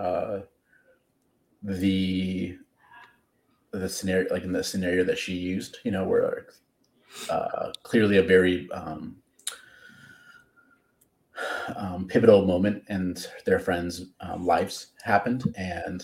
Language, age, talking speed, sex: English, 30-49, 110 wpm, male